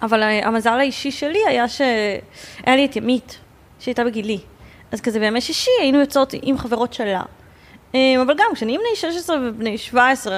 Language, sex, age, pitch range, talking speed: Hebrew, female, 20-39, 200-255 Hz, 155 wpm